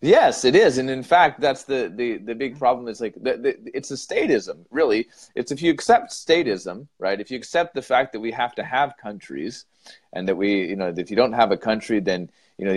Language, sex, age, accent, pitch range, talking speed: English, male, 30-49, American, 100-135 Hz, 240 wpm